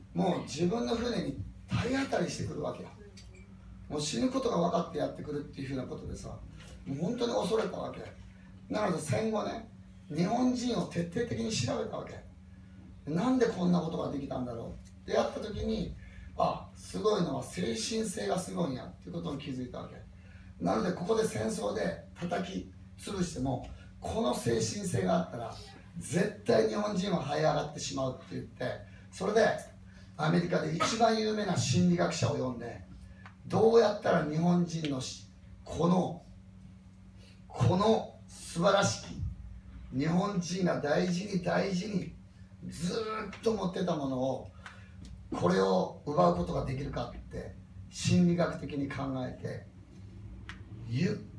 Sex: male